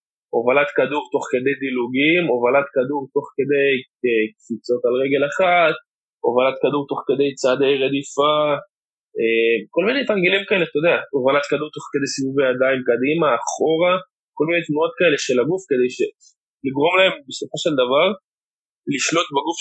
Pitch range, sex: 130-180 Hz, male